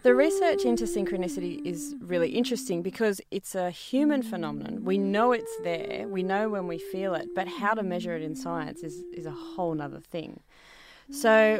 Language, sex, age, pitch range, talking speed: English, female, 30-49, 170-220 Hz, 185 wpm